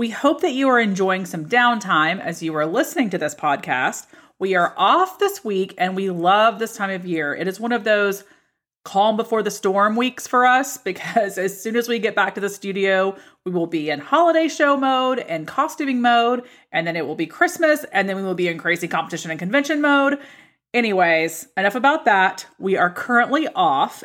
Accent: American